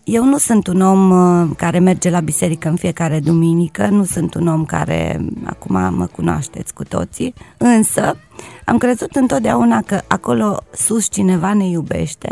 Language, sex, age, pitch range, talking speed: Romanian, female, 30-49, 165-215 Hz, 155 wpm